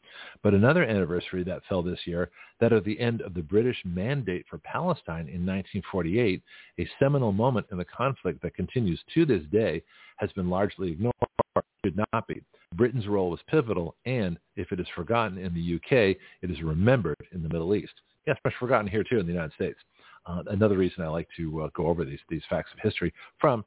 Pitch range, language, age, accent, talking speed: 90-115 Hz, English, 50-69, American, 210 wpm